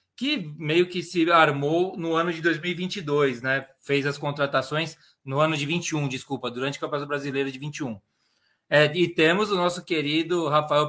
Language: Portuguese